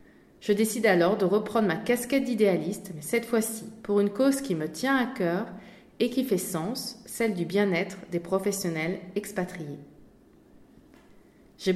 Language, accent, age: English, French, 20-39